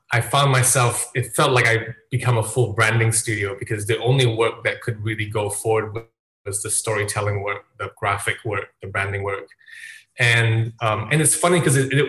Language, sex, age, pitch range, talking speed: English, male, 20-39, 110-125 Hz, 190 wpm